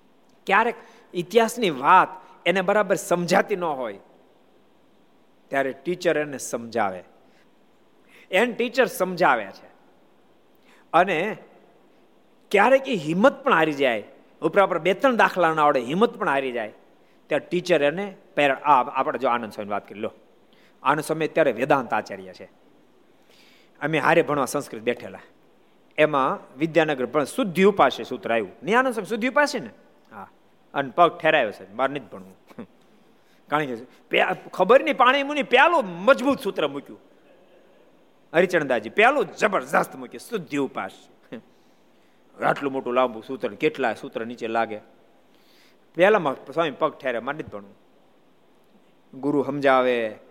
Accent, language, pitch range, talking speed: native, Gujarati, 135-200 Hz, 105 wpm